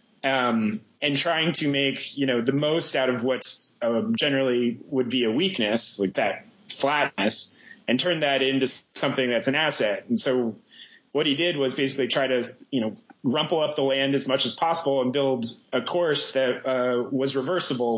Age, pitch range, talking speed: 30-49, 125-145 Hz, 185 wpm